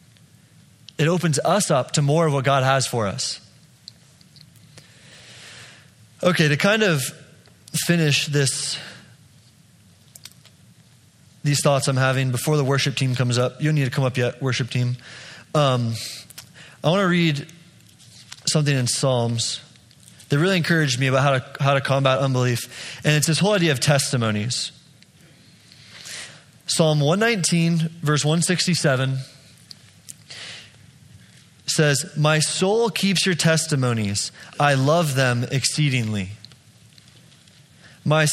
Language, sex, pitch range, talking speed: English, male, 130-165 Hz, 120 wpm